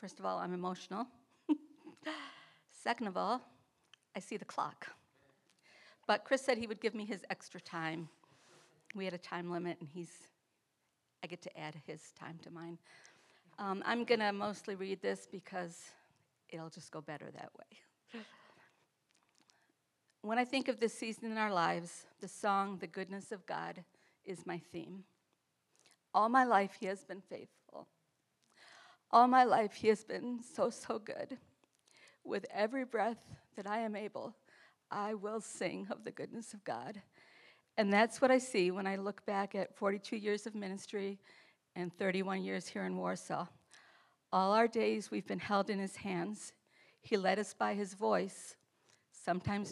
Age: 50-69